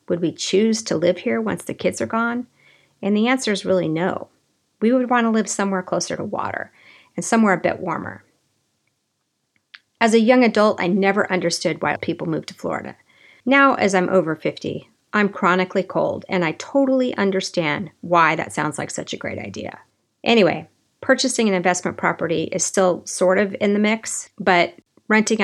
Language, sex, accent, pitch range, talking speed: English, female, American, 180-225 Hz, 180 wpm